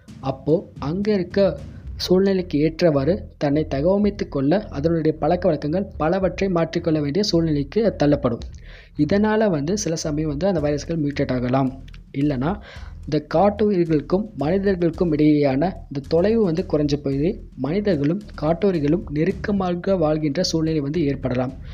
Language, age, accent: Tamil, 20-39, native